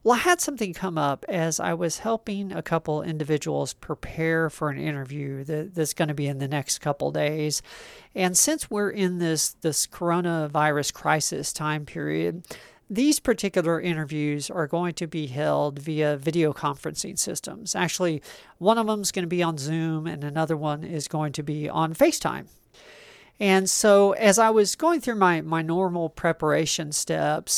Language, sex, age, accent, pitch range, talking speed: English, male, 40-59, American, 150-180 Hz, 170 wpm